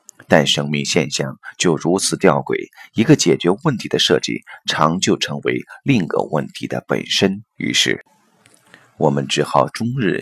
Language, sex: Chinese, male